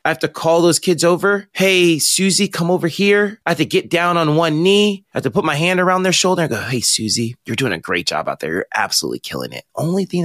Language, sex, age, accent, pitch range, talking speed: English, male, 30-49, American, 125-185 Hz, 270 wpm